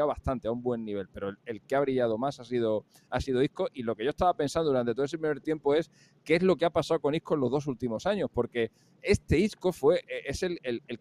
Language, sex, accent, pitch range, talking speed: Spanish, male, Spanish, 115-165 Hz, 275 wpm